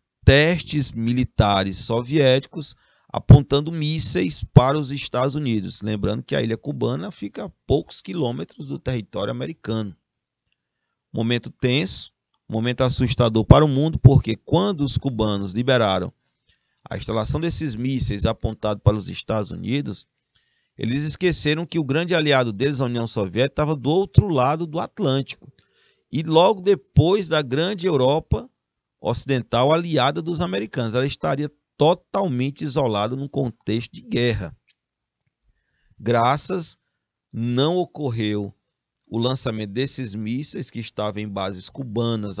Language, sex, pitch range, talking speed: Portuguese, male, 110-145 Hz, 125 wpm